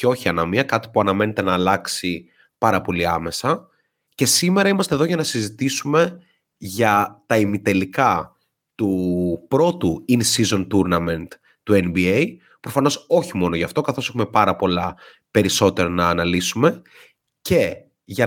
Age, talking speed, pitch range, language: 30-49, 135 wpm, 95-130 Hz, Greek